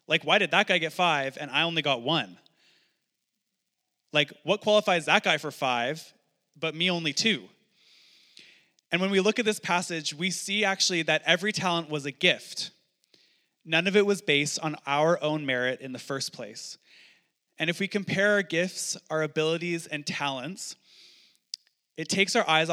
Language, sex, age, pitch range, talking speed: English, male, 20-39, 150-185 Hz, 175 wpm